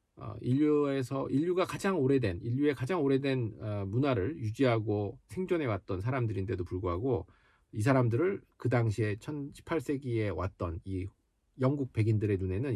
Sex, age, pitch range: male, 40-59, 105-150 Hz